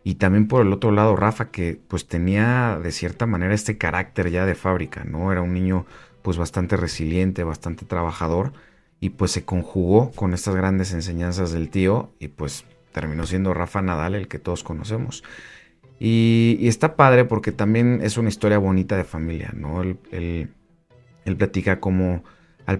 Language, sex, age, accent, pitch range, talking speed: Spanish, male, 40-59, Mexican, 85-105 Hz, 170 wpm